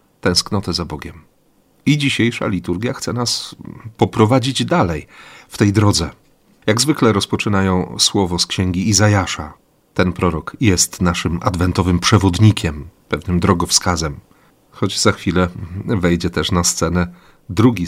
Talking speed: 120 wpm